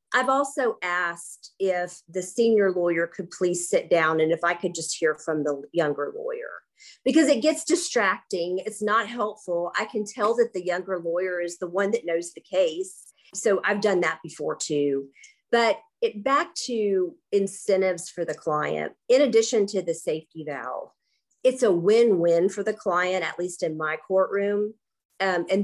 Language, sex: English, female